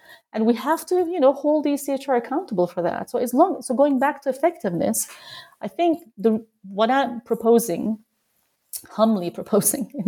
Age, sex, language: 30-49, female, English